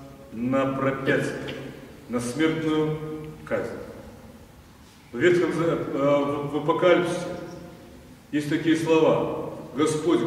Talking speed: 75 wpm